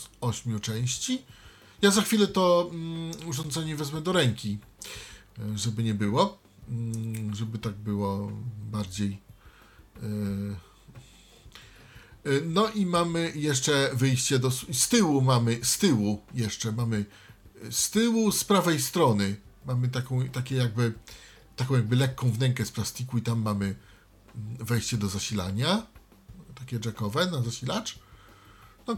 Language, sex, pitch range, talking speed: Polish, male, 110-140 Hz, 115 wpm